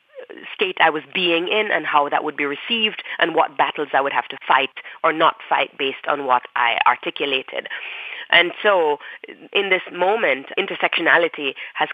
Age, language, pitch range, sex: 30-49, English, 155-220 Hz, female